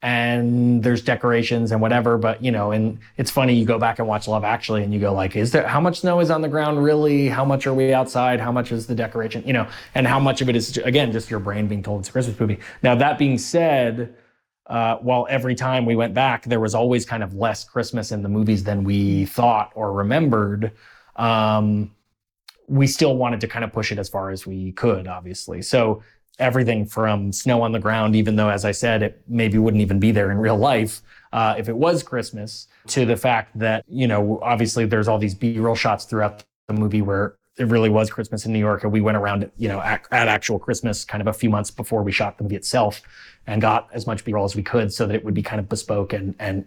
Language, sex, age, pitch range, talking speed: English, male, 20-39, 105-120 Hz, 245 wpm